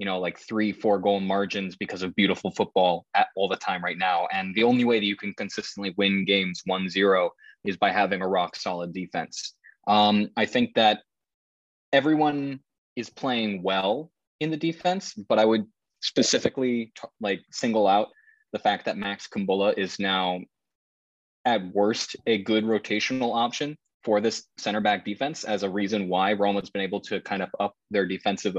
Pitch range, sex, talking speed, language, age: 95-115 Hz, male, 180 wpm, English, 20-39